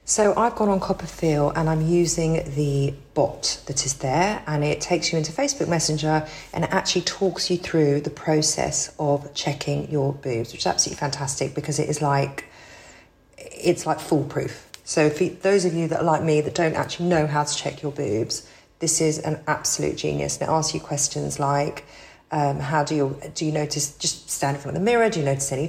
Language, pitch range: English, 145-175 Hz